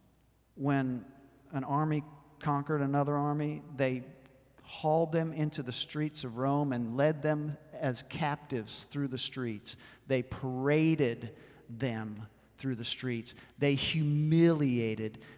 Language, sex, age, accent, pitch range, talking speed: English, male, 50-69, American, 130-160 Hz, 115 wpm